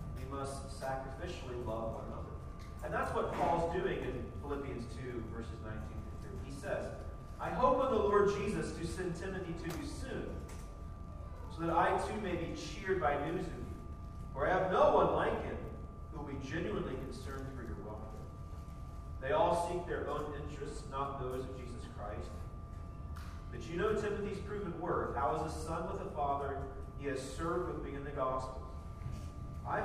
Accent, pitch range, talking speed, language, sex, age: American, 85-140 Hz, 175 wpm, English, male, 40-59